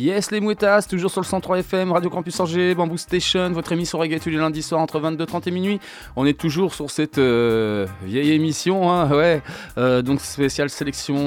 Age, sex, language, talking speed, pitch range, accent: 20-39, male, French, 200 wpm, 125-170 Hz, French